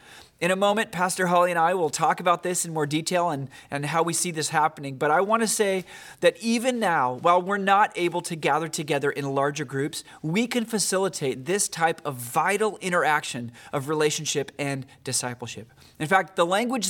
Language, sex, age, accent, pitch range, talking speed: English, male, 30-49, American, 140-185 Hz, 195 wpm